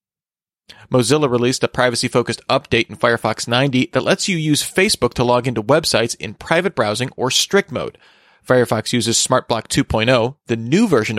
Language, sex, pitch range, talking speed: English, male, 115-145 Hz, 160 wpm